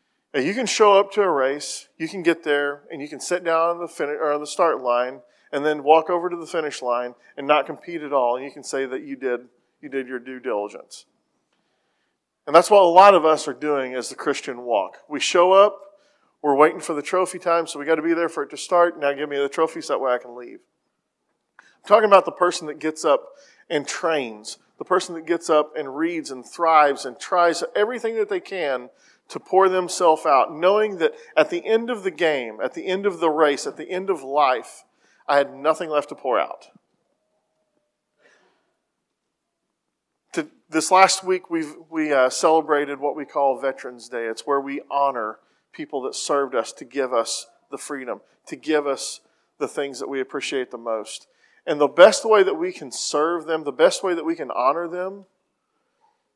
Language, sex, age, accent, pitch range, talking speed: English, male, 40-59, American, 140-185 Hz, 215 wpm